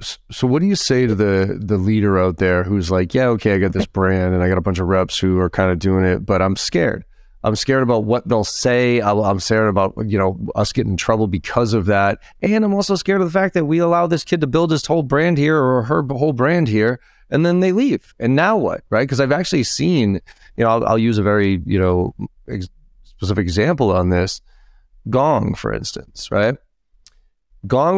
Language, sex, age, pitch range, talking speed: English, male, 30-49, 100-140 Hz, 230 wpm